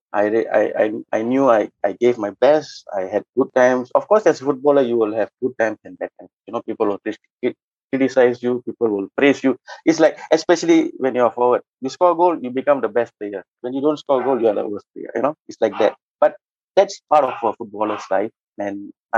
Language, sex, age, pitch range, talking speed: English, male, 20-39, 110-140 Hz, 235 wpm